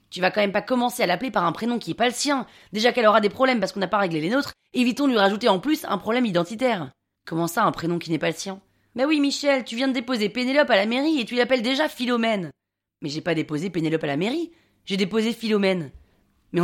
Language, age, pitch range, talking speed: French, 20-39, 195-255 Hz, 265 wpm